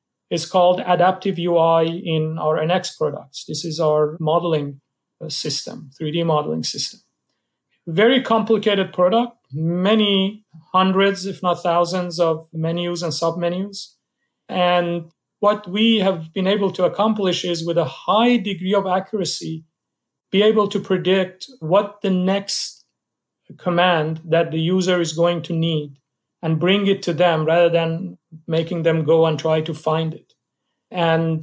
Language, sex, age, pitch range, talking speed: English, male, 40-59, 155-185 Hz, 140 wpm